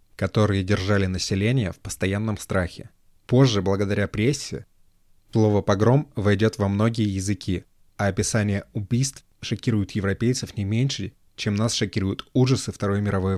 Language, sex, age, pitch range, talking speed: Russian, male, 20-39, 95-110 Hz, 125 wpm